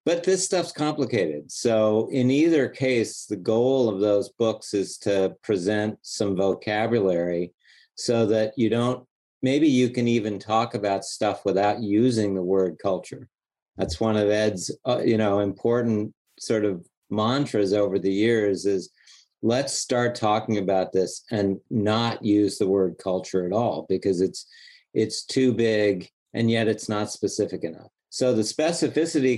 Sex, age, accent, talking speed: male, 50-69, American, 150 wpm